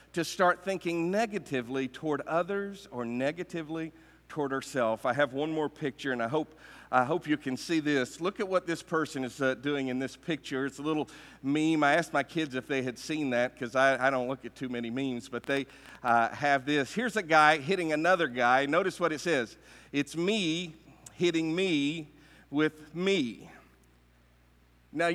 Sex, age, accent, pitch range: male, 50-69, American, 140-195 Hz